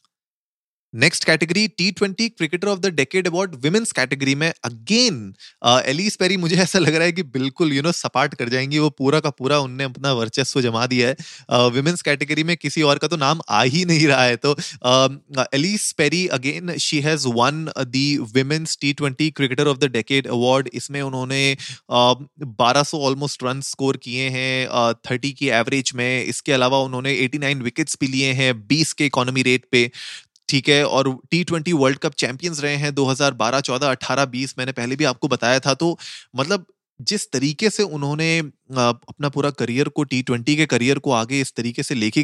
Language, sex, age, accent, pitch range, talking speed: Hindi, male, 20-39, native, 130-155 Hz, 185 wpm